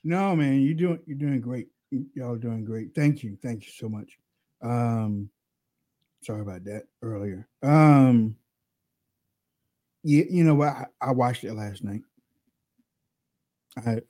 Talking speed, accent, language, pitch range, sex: 150 wpm, American, English, 115-140 Hz, male